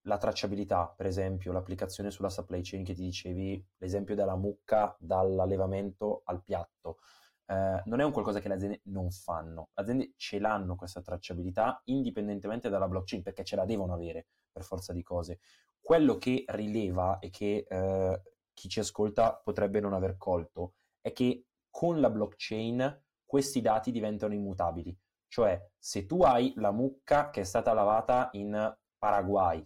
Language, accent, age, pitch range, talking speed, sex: Italian, native, 20-39, 95-115 Hz, 160 wpm, male